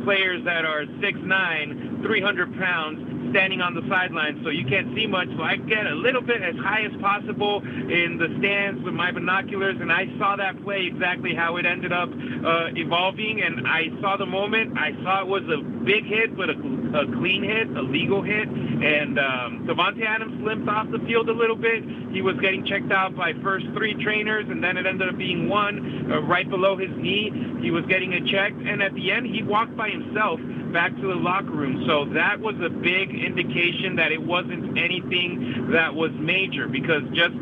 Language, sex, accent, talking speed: English, male, American, 205 wpm